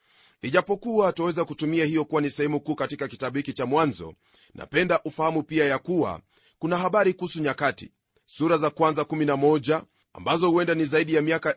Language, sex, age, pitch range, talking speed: Swahili, male, 30-49, 150-175 Hz, 165 wpm